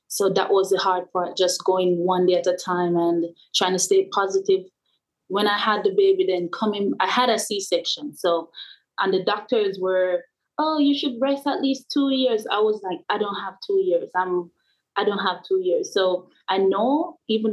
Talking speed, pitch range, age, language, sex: 205 wpm, 180-235 Hz, 20-39, English, female